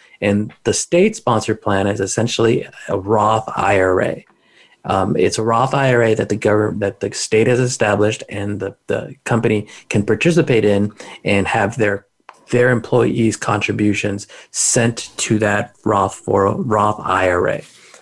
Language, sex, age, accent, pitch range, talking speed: English, male, 30-49, American, 105-125 Hz, 145 wpm